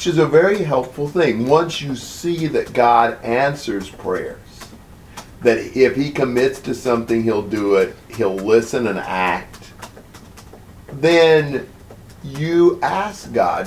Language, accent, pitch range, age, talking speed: English, American, 100-135 Hz, 50-69, 130 wpm